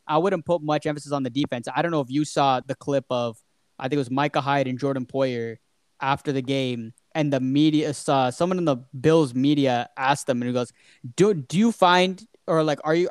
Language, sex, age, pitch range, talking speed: English, male, 10-29, 140-185 Hz, 235 wpm